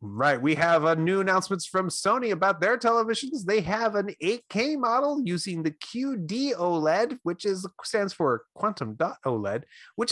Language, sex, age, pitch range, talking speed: English, male, 30-49, 115-165 Hz, 165 wpm